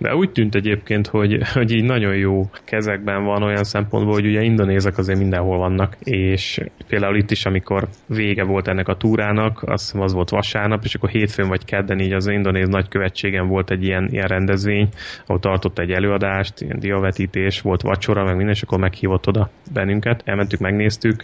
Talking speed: 180 wpm